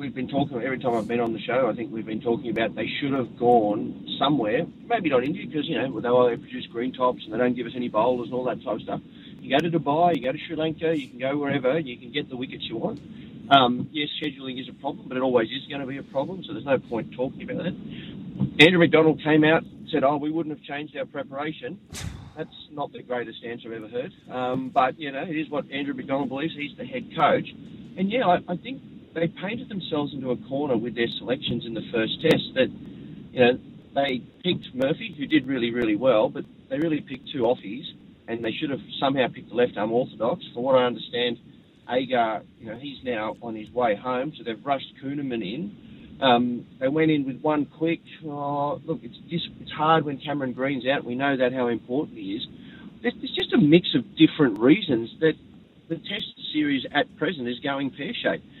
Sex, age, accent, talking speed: male, 30-49, Australian, 225 wpm